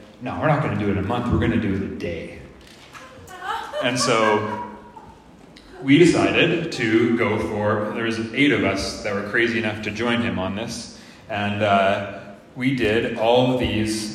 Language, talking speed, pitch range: English, 195 wpm, 110-140 Hz